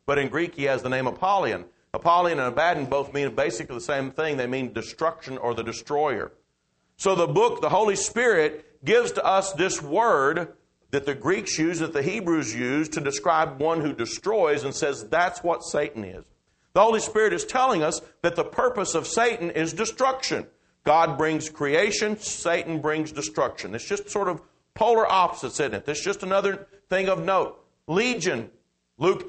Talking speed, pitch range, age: 180 wpm, 145-195 Hz, 50-69